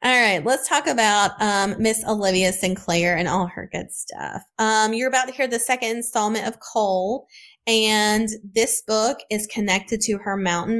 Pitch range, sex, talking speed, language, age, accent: 195-235 Hz, female, 170 wpm, English, 20-39, American